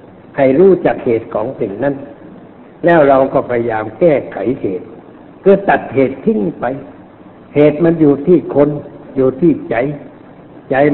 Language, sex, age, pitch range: Thai, male, 60-79, 125-165 Hz